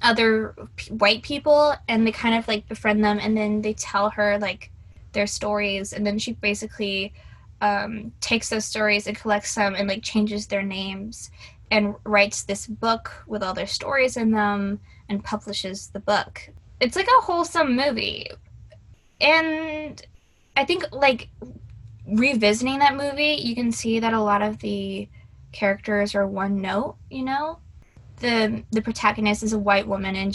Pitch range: 200-230 Hz